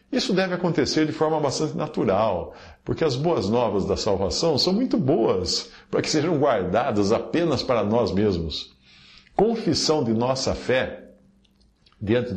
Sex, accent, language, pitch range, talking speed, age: male, Brazilian, Portuguese, 105-155 Hz, 140 wpm, 50-69